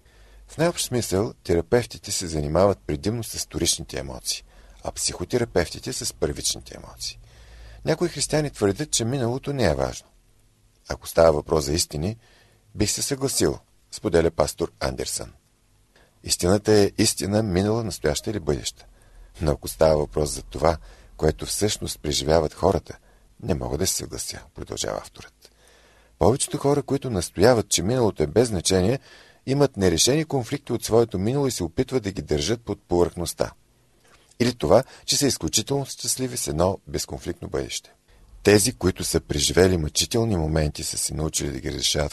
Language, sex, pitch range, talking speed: Bulgarian, male, 80-115 Hz, 150 wpm